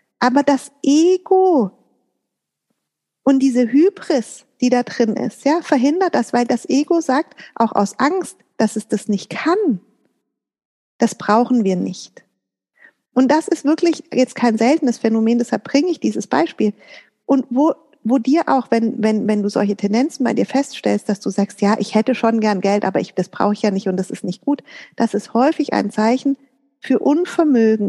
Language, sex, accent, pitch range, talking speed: German, female, German, 210-280 Hz, 175 wpm